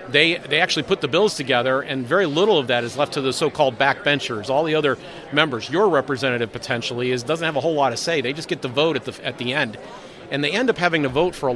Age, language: 50-69, English